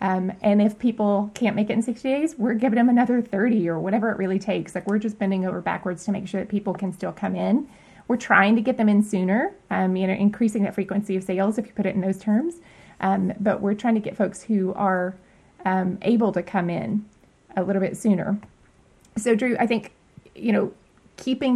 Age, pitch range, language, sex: 20-39, 190-210 Hz, English, female